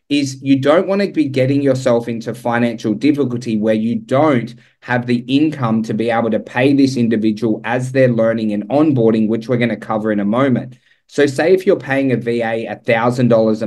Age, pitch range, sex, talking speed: 20-39, 115-135 Hz, male, 200 wpm